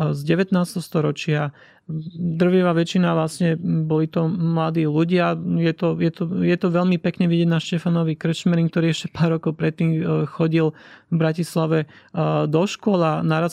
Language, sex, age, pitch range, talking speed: Slovak, male, 30-49, 160-185 Hz, 150 wpm